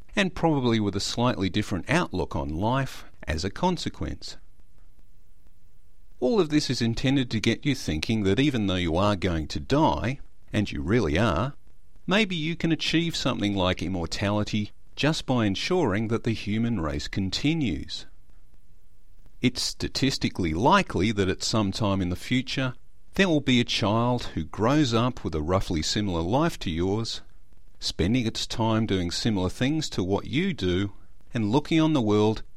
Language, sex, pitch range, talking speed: English, male, 90-130 Hz, 160 wpm